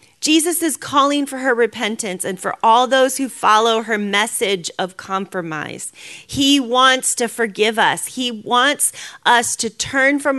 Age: 40-59